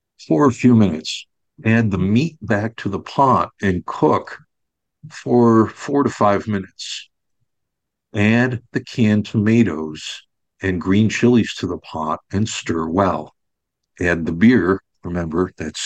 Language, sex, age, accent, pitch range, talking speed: English, male, 60-79, American, 90-120 Hz, 135 wpm